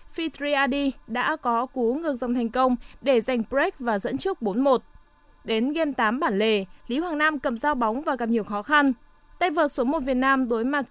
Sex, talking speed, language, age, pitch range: female, 220 wpm, Vietnamese, 20-39, 230-295 Hz